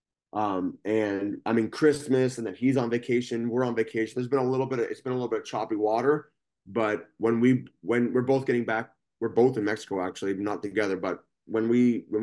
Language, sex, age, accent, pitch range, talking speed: English, male, 20-39, American, 115-140 Hz, 225 wpm